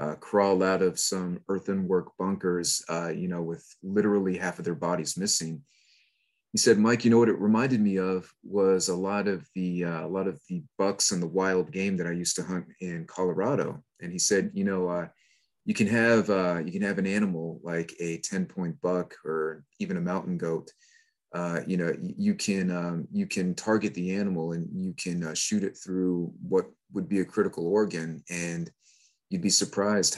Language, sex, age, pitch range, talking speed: English, male, 30-49, 90-115 Hz, 205 wpm